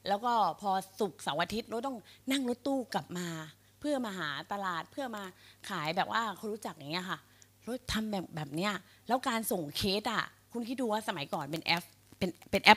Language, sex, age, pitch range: Thai, female, 30-49, 175-240 Hz